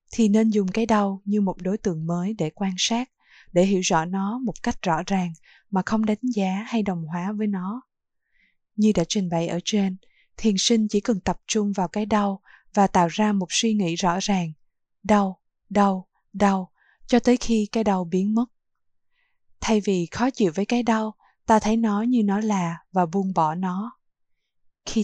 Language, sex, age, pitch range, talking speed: Vietnamese, female, 20-39, 180-220 Hz, 195 wpm